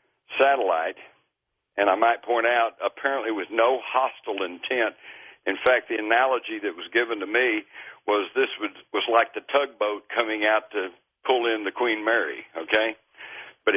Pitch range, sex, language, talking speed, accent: 110-150 Hz, male, English, 160 wpm, American